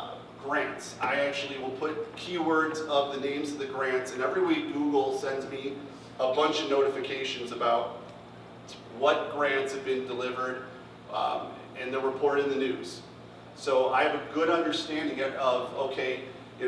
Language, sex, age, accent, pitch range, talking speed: English, male, 30-49, American, 130-155 Hz, 160 wpm